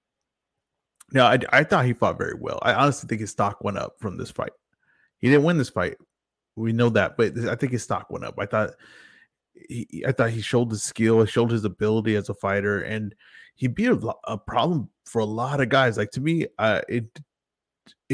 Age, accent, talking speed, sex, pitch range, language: 20-39, American, 210 wpm, male, 105-135 Hz, English